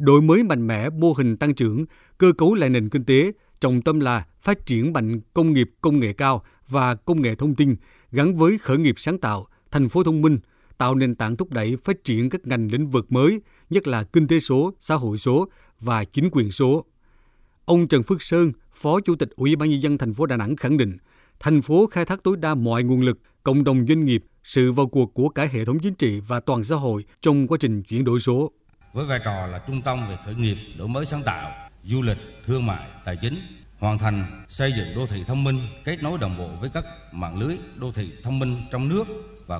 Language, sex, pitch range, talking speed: Vietnamese, male, 110-150 Hz, 235 wpm